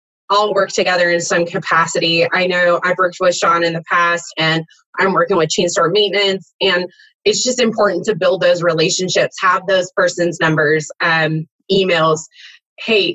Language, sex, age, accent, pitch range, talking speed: English, female, 20-39, American, 175-210 Hz, 170 wpm